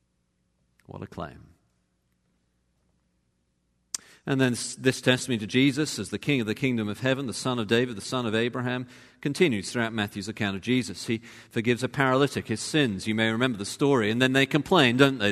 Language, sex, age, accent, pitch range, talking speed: English, male, 40-59, British, 100-150 Hz, 190 wpm